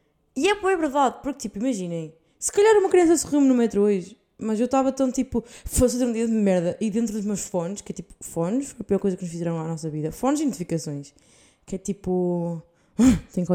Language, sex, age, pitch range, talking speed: Portuguese, female, 20-39, 185-235 Hz, 240 wpm